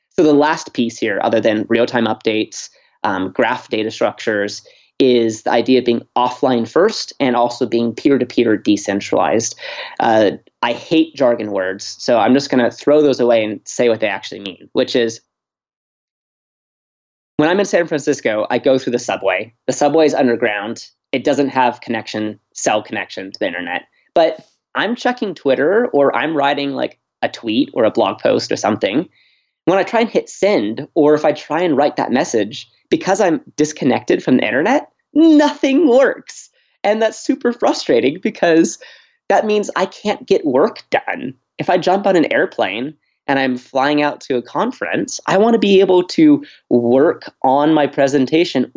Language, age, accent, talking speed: English, 20-39, American, 175 wpm